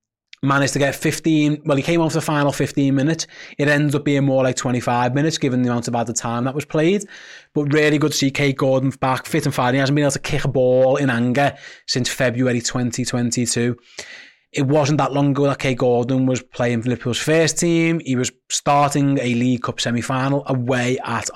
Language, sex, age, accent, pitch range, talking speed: English, male, 20-39, British, 125-145 Hz, 215 wpm